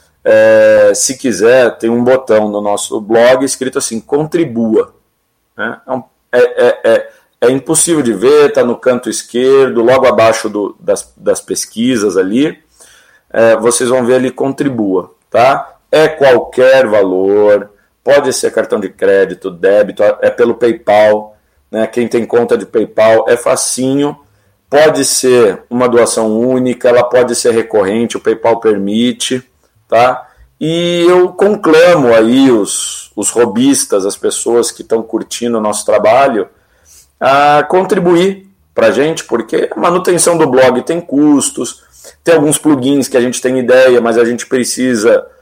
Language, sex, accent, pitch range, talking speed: Portuguese, male, Brazilian, 115-190 Hz, 135 wpm